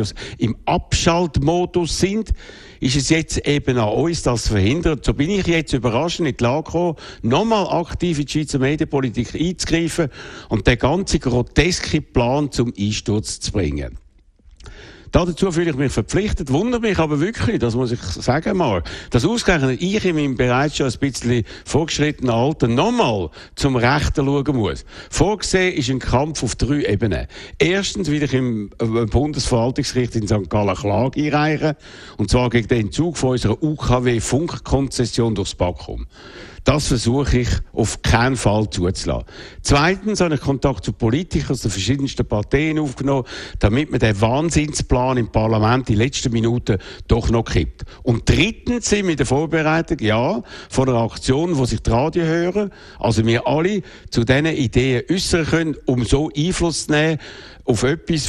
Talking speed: 160 wpm